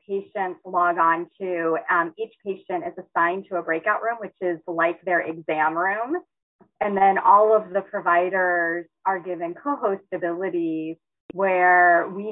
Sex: female